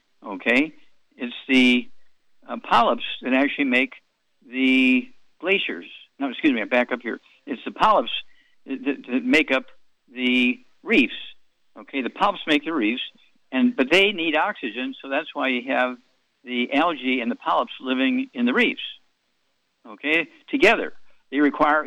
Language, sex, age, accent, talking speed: English, male, 60-79, American, 150 wpm